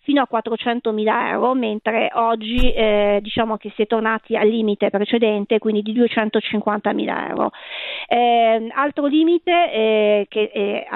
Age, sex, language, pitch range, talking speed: 40-59, female, Italian, 215-245 Hz, 140 wpm